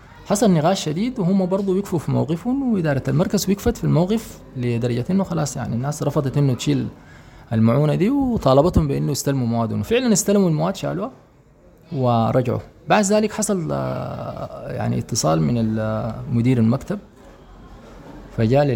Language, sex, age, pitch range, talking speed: English, male, 20-39, 115-155 Hz, 130 wpm